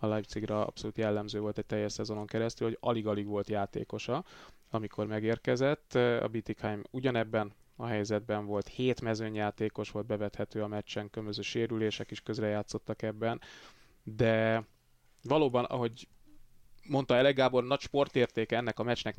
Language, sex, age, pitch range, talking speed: Hungarian, male, 20-39, 105-120 Hz, 135 wpm